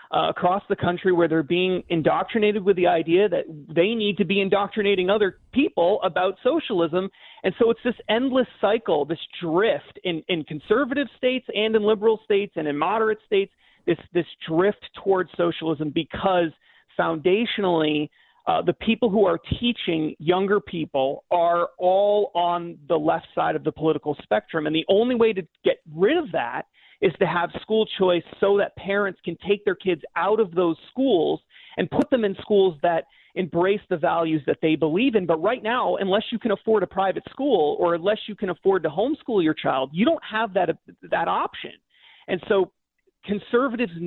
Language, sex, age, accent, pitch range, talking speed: English, male, 30-49, American, 175-225 Hz, 180 wpm